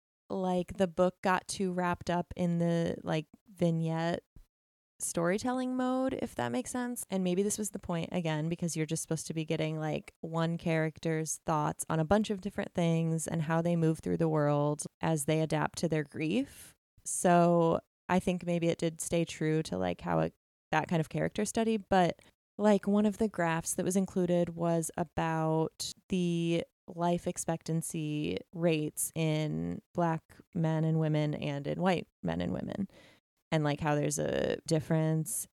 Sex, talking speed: female, 175 wpm